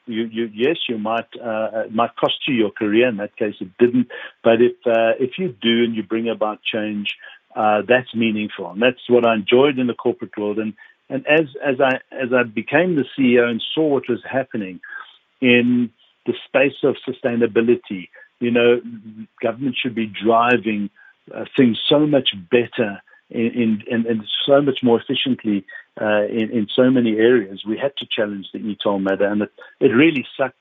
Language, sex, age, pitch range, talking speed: English, male, 60-79, 105-125 Hz, 190 wpm